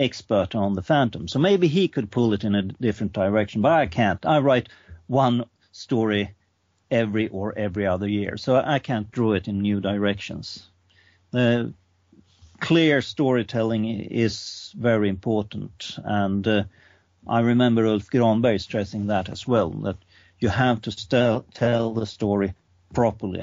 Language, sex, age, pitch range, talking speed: English, male, 50-69, 95-120 Hz, 150 wpm